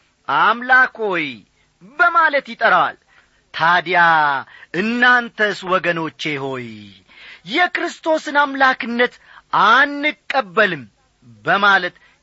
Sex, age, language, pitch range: male, 40-59, Amharic, 175-255 Hz